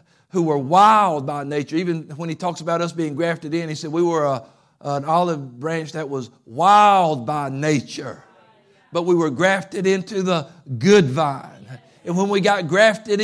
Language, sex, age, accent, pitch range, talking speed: English, male, 50-69, American, 155-215 Hz, 180 wpm